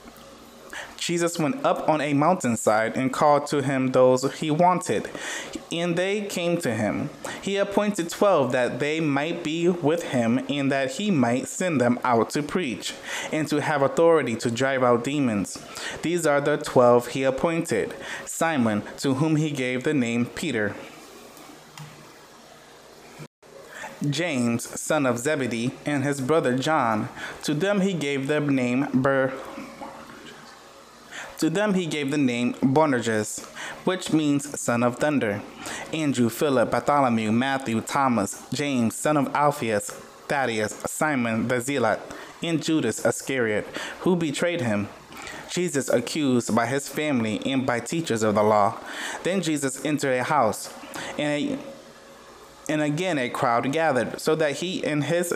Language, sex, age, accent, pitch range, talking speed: English, male, 20-39, American, 125-160 Hz, 140 wpm